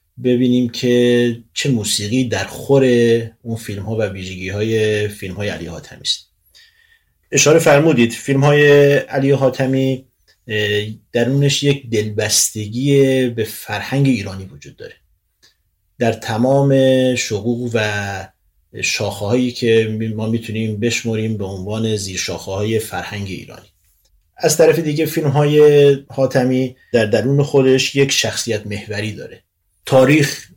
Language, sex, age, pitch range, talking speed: Persian, male, 30-49, 105-130 Hz, 115 wpm